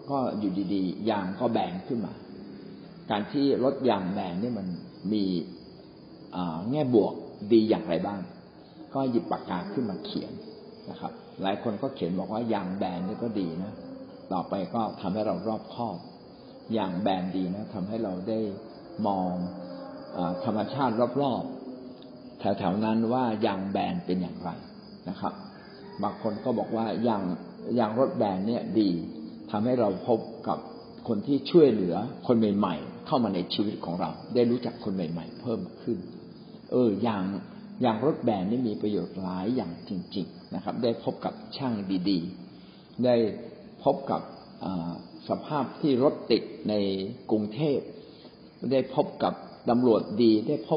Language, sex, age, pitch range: Thai, male, 60-79, 100-135 Hz